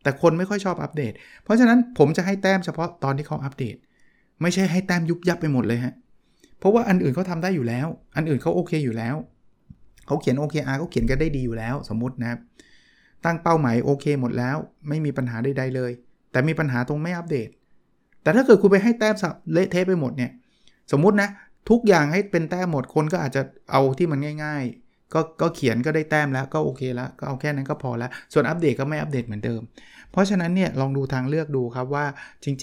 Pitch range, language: 125-160 Hz, Thai